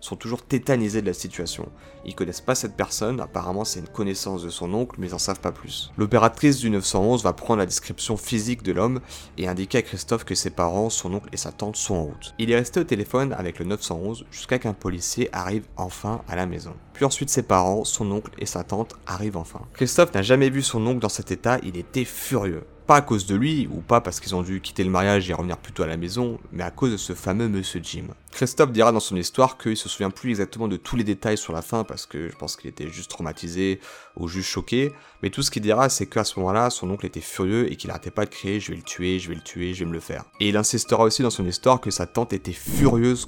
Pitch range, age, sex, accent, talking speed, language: 90-115 Hz, 30-49, male, French, 260 wpm, French